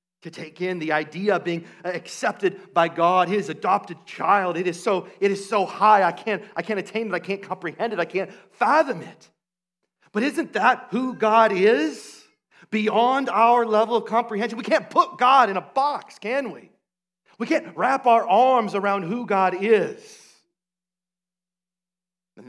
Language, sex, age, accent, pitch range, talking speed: English, male, 40-59, American, 155-200 Hz, 170 wpm